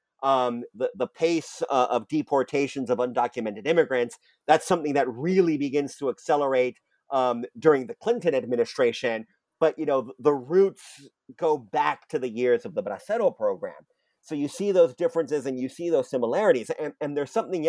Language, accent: English, American